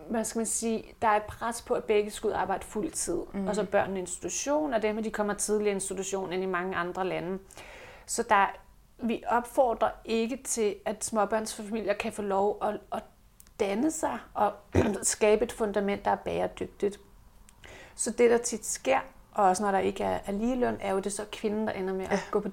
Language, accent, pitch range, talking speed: Danish, native, 200-235 Hz, 195 wpm